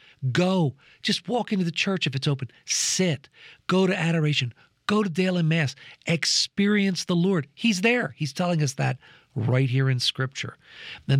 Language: English